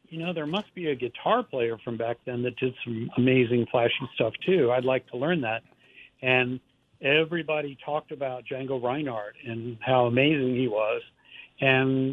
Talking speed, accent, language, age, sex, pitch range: 175 wpm, American, English, 60-79, male, 120-145 Hz